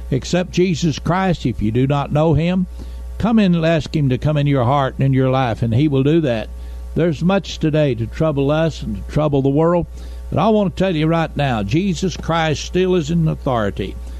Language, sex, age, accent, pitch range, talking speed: English, male, 60-79, American, 115-170 Hz, 225 wpm